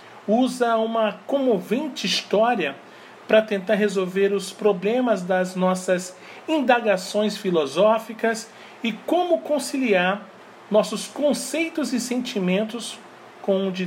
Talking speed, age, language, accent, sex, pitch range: 100 wpm, 40-59, Portuguese, Brazilian, male, 200-255 Hz